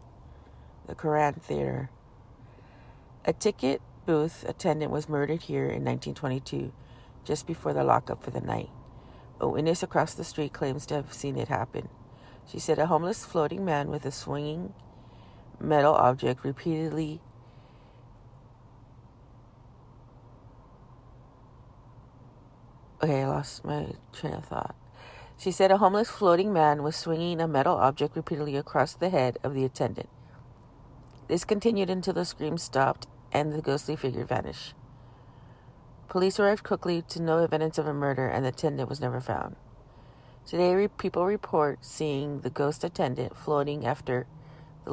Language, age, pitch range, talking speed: English, 40-59, 125-155 Hz, 140 wpm